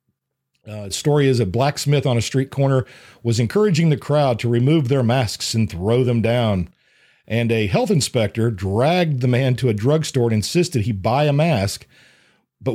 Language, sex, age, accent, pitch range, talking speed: English, male, 50-69, American, 105-145 Hz, 185 wpm